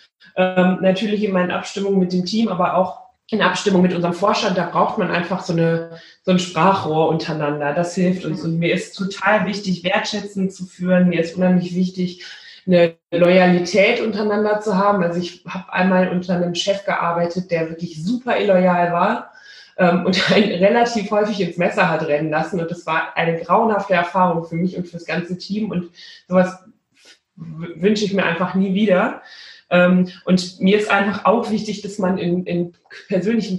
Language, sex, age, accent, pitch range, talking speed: German, female, 20-39, German, 175-200 Hz, 180 wpm